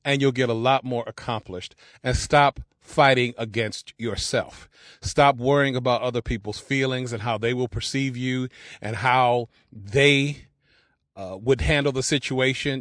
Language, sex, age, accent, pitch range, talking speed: English, male, 40-59, American, 120-145 Hz, 150 wpm